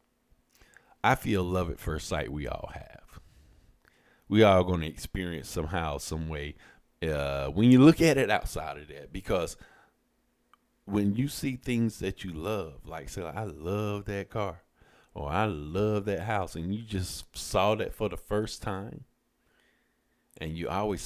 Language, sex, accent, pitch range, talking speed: English, male, American, 80-105 Hz, 165 wpm